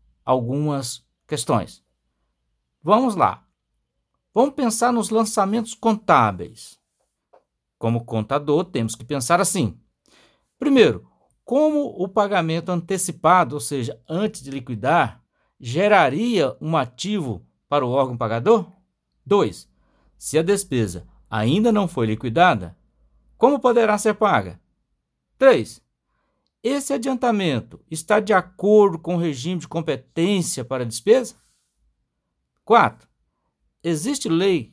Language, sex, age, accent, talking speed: Portuguese, male, 60-79, Brazilian, 105 wpm